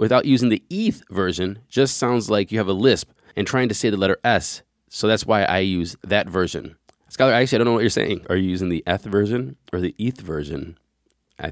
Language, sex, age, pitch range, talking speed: English, male, 20-39, 95-130 Hz, 235 wpm